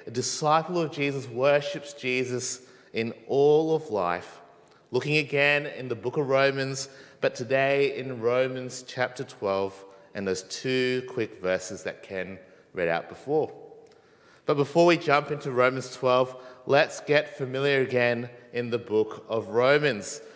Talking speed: 145 wpm